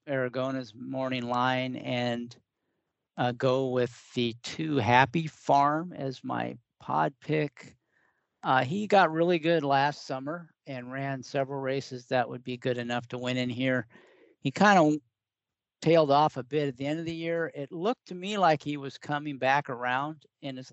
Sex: male